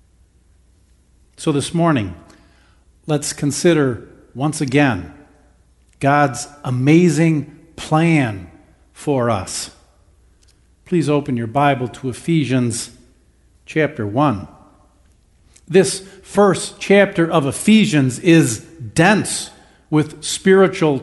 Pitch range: 130-190 Hz